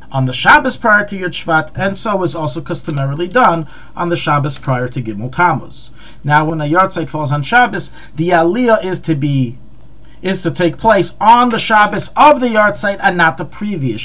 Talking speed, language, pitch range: 200 wpm, English, 145-200 Hz